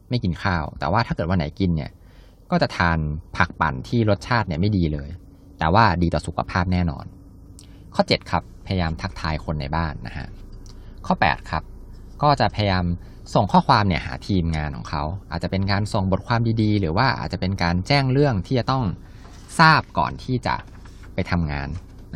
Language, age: Thai, 20-39